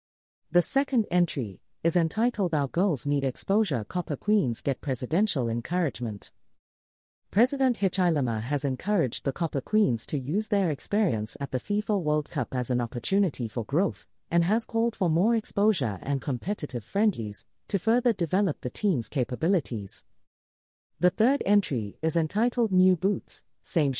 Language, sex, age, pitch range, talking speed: English, female, 40-59, 120-195 Hz, 145 wpm